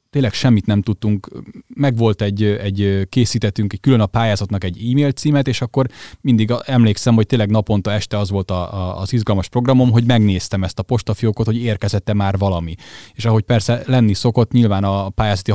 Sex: male